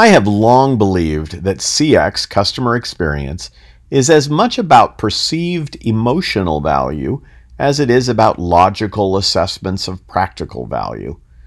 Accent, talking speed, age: American, 125 wpm, 50-69